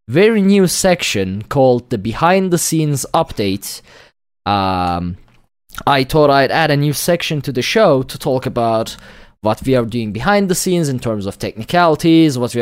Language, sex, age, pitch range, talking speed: English, male, 20-39, 110-160 Hz, 160 wpm